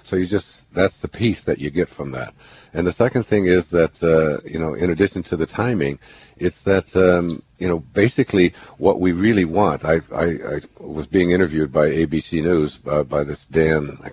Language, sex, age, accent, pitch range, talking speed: English, male, 60-79, American, 75-90 Hz, 200 wpm